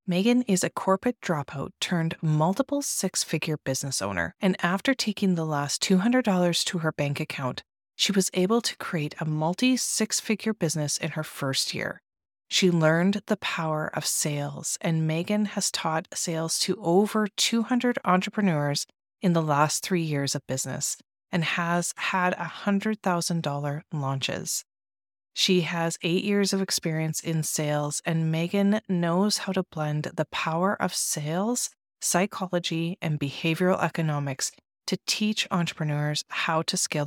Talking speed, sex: 140 wpm, female